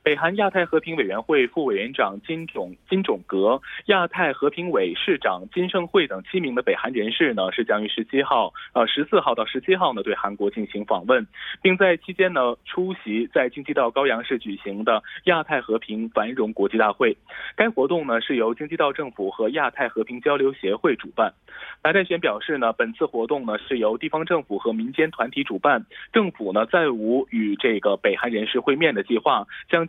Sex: male